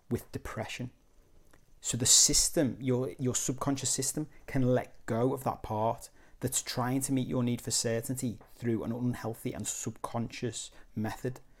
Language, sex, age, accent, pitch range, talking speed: English, male, 30-49, British, 115-135 Hz, 150 wpm